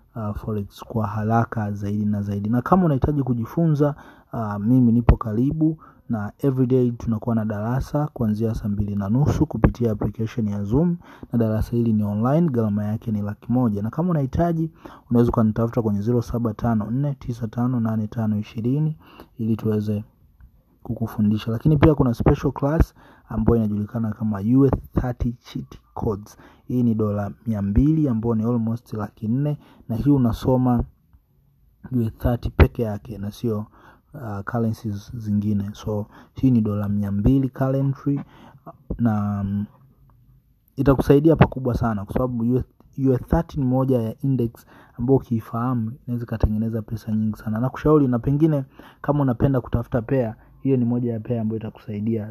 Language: Swahili